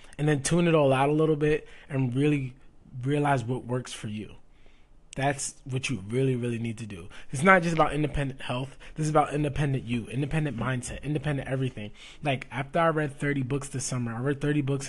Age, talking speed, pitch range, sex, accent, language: 20-39, 205 wpm, 125-150 Hz, male, American, English